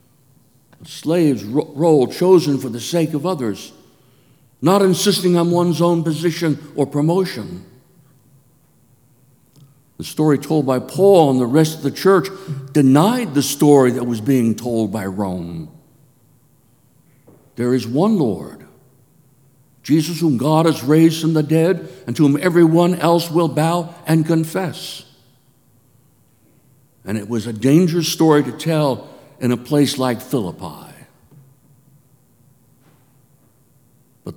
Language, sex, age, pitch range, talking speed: English, male, 60-79, 130-160 Hz, 125 wpm